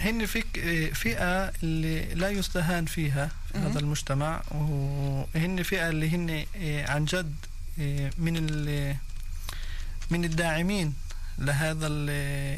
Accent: Lebanese